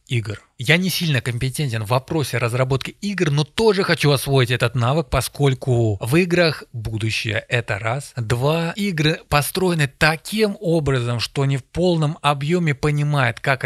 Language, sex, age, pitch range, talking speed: Russian, male, 20-39, 125-175 Hz, 145 wpm